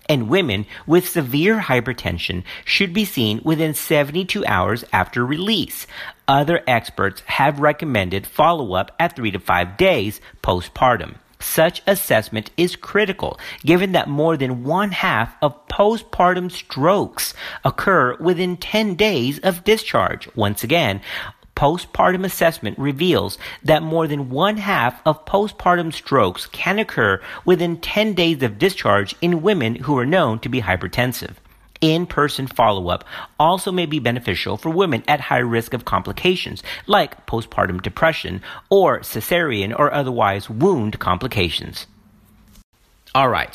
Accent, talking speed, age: American, 125 wpm, 50-69